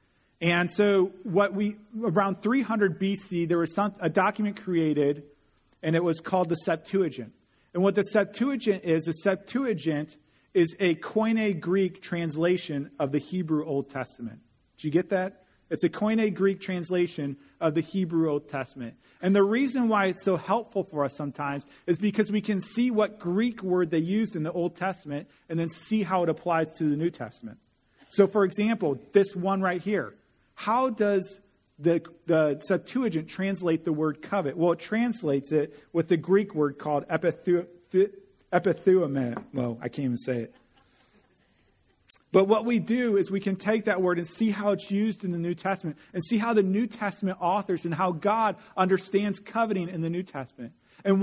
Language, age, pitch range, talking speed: English, 40-59, 160-205 Hz, 180 wpm